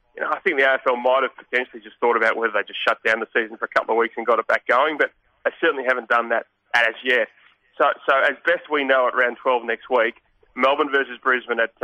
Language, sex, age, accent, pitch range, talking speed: English, male, 20-39, Australian, 115-130 Hz, 265 wpm